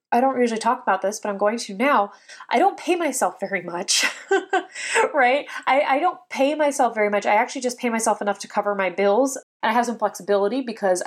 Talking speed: 215 wpm